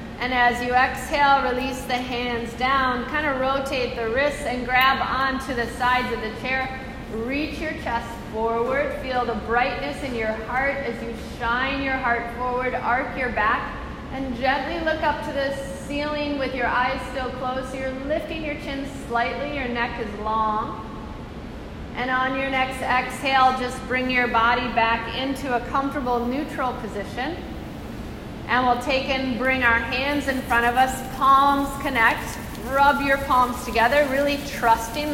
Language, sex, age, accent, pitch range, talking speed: English, female, 30-49, American, 245-275 Hz, 165 wpm